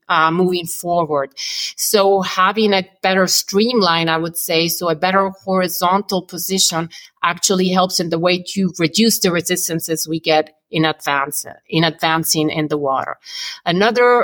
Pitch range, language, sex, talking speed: 165-195 Hz, English, female, 150 wpm